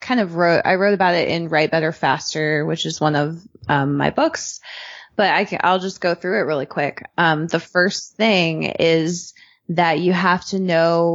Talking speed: 205 wpm